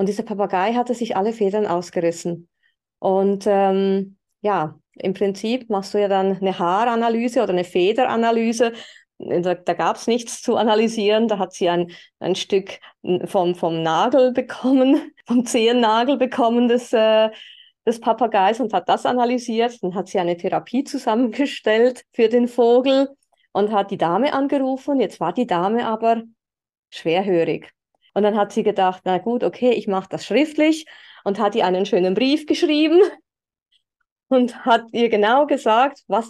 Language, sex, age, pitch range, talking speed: German, female, 30-49, 195-250 Hz, 155 wpm